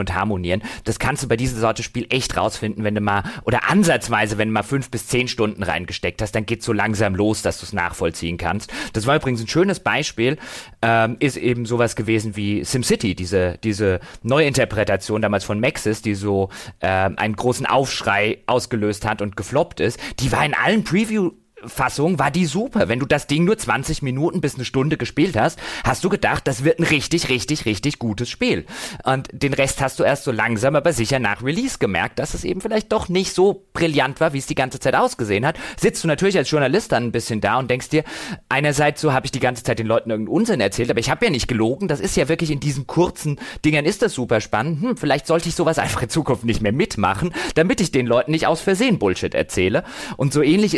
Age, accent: 30-49, German